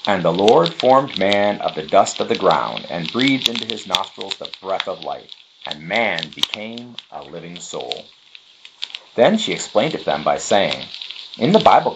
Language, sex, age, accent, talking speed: English, male, 40-59, American, 185 wpm